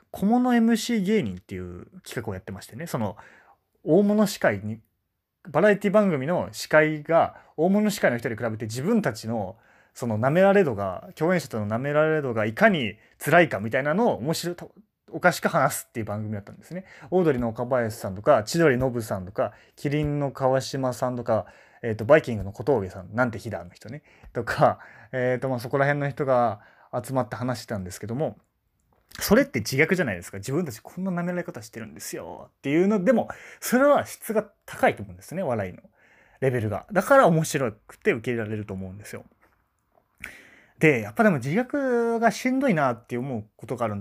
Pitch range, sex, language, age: 110-180 Hz, male, Japanese, 30-49